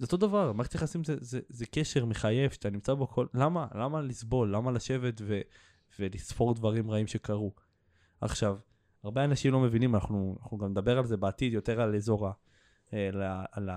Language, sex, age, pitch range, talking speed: Hebrew, male, 20-39, 105-130 Hz, 185 wpm